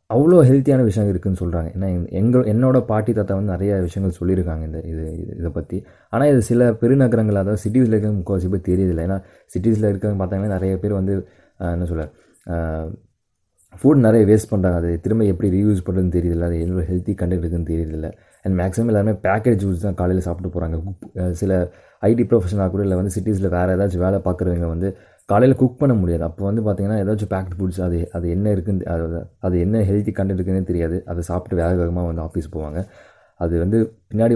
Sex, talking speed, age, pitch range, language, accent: male, 185 wpm, 20-39, 85-105 Hz, Tamil, native